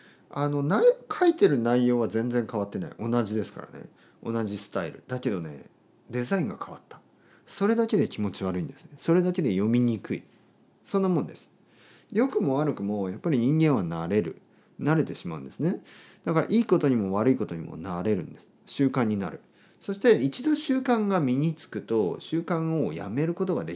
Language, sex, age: Japanese, male, 40-59